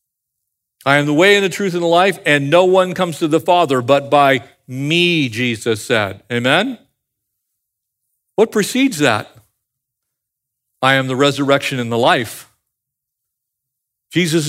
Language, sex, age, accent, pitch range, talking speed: English, male, 50-69, American, 130-180 Hz, 140 wpm